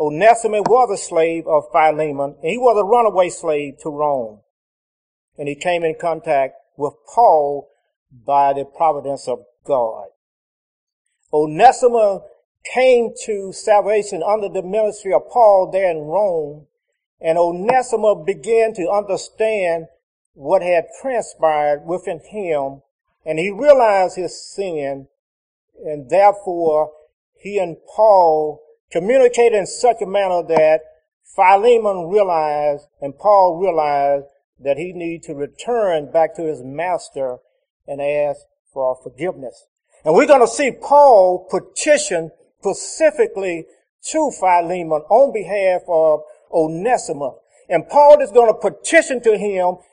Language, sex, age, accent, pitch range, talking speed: English, male, 50-69, American, 155-210 Hz, 125 wpm